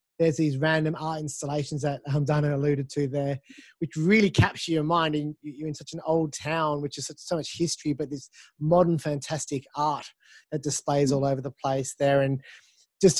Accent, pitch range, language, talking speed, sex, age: Australian, 145-175 Hz, English, 185 wpm, male, 20-39